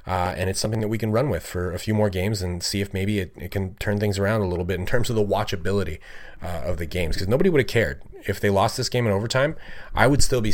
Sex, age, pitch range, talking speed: male, 30-49, 85-105 Hz, 295 wpm